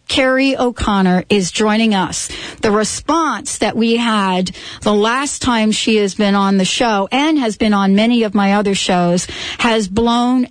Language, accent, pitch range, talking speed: English, American, 195-235 Hz, 170 wpm